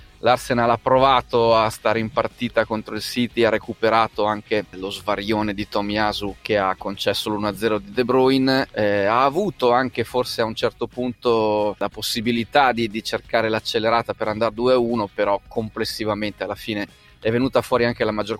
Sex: male